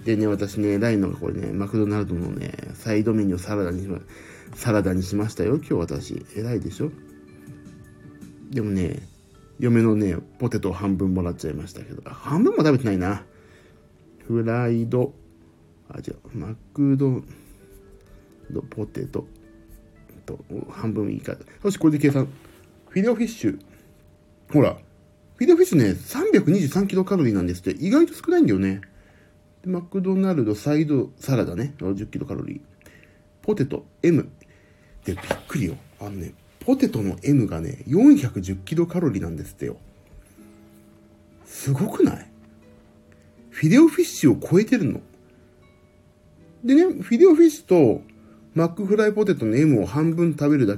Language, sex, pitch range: Japanese, male, 100-155 Hz